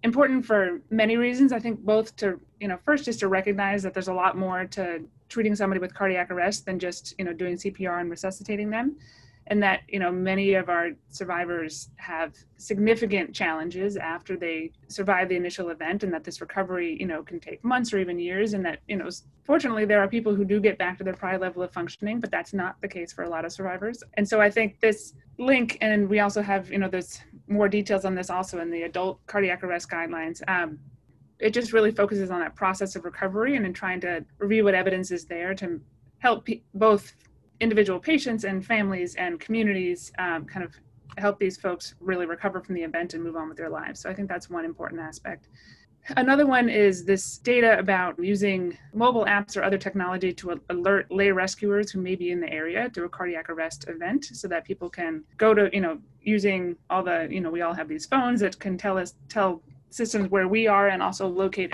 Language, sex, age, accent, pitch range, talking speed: English, female, 30-49, American, 175-205 Hz, 220 wpm